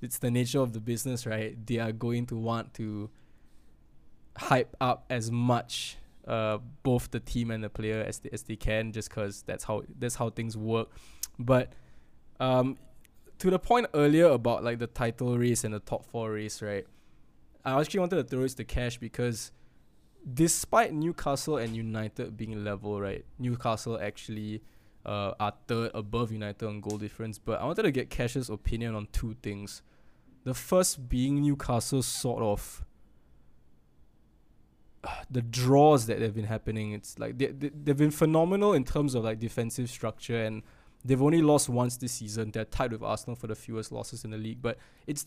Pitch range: 110-130 Hz